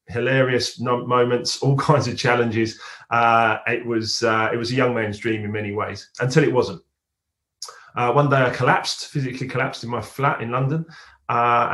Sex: male